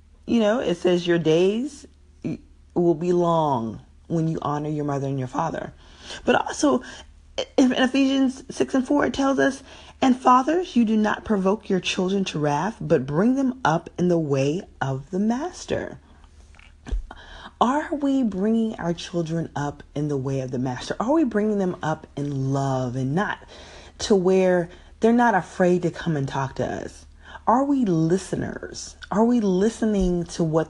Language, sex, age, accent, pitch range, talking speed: English, female, 40-59, American, 130-190 Hz, 170 wpm